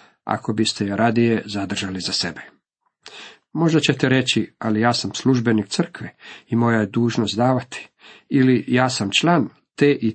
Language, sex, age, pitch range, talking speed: Croatian, male, 50-69, 110-140 Hz, 155 wpm